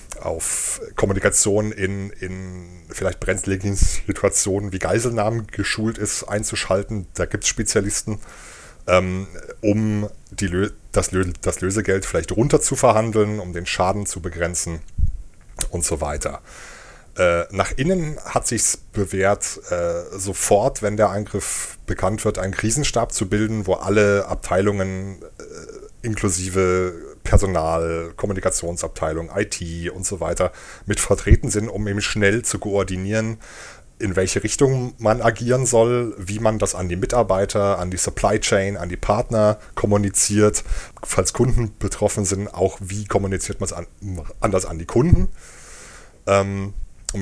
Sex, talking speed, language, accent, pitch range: male, 130 wpm, German, German, 90-105 Hz